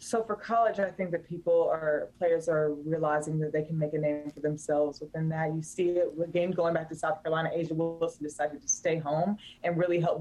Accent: American